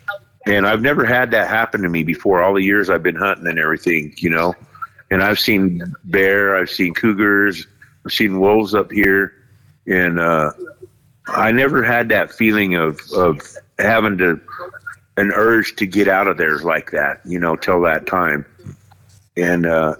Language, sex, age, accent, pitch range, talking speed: English, male, 50-69, American, 90-115 Hz, 170 wpm